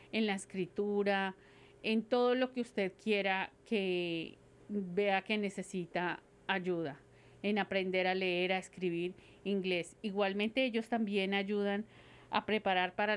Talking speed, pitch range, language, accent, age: 130 wpm, 185-215 Hz, English, Colombian, 40-59